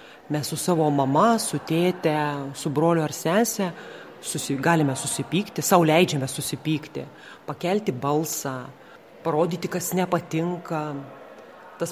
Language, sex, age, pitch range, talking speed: English, female, 30-49, 155-185 Hz, 105 wpm